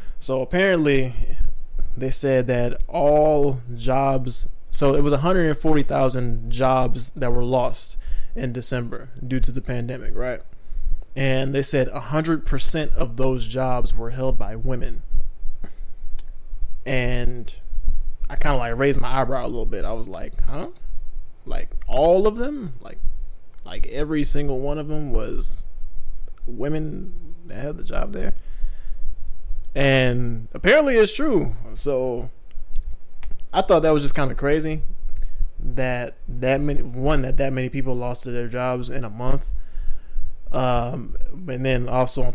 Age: 20-39